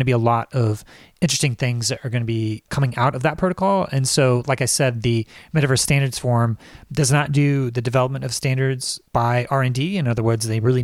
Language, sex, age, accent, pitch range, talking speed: English, male, 30-49, American, 110-130 Hz, 220 wpm